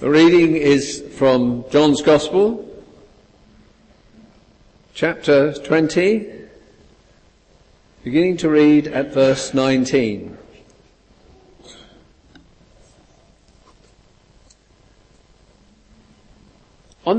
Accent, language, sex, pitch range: British, English, male, 130-210 Hz